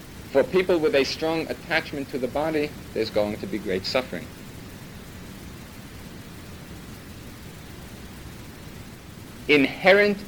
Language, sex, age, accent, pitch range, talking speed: English, male, 50-69, American, 110-170 Hz, 95 wpm